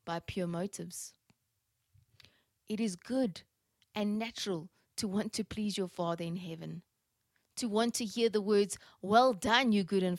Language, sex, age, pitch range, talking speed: English, female, 30-49, 165-205 Hz, 160 wpm